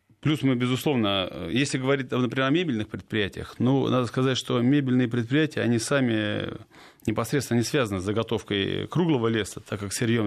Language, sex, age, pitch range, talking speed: Russian, male, 30-49, 105-135 Hz, 160 wpm